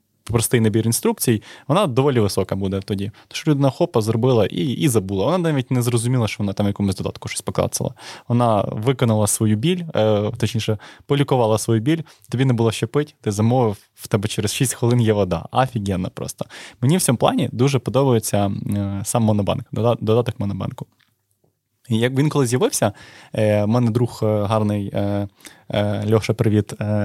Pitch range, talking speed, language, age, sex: 110-135 Hz, 155 wpm, Ukrainian, 20-39, male